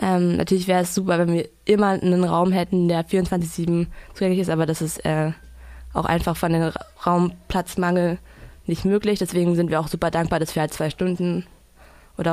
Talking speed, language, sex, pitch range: 185 wpm, German, female, 170-195 Hz